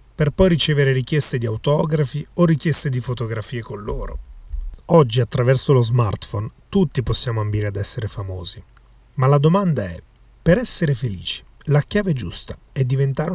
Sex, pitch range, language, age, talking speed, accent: male, 110-140 Hz, Italian, 30-49, 155 wpm, native